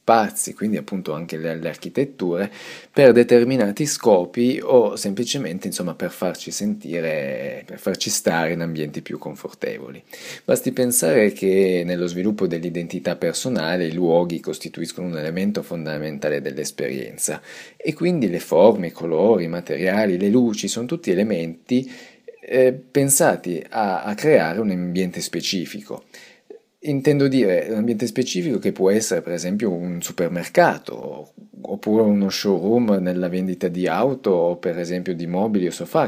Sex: male